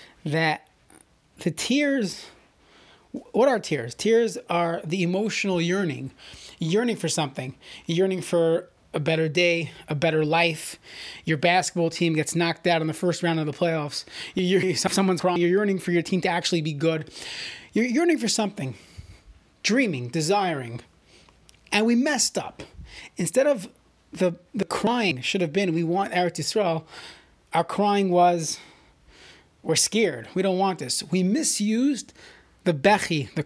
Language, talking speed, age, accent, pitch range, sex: English, 150 wpm, 30-49, American, 165-210 Hz, male